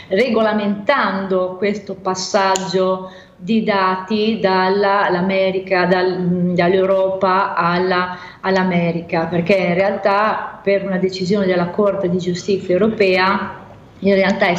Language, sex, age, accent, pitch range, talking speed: Italian, female, 30-49, native, 185-205 Hz, 100 wpm